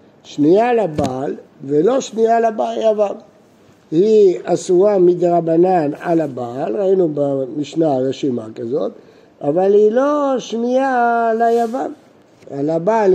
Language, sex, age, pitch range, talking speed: Hebrew, male, 60-79, 150-220 Hz, 105 wpm